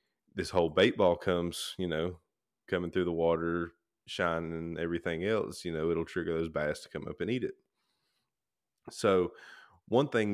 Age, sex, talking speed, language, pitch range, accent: 20-39, male, 175 wpm, English, 85-95 Hz, American